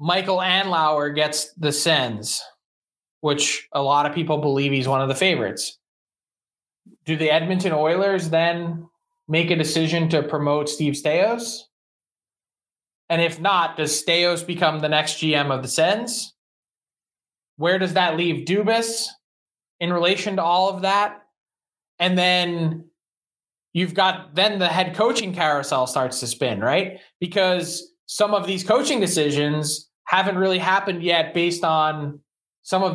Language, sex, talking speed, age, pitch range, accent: English, male, 140 wpm, 20-39, 160-200 Hz, American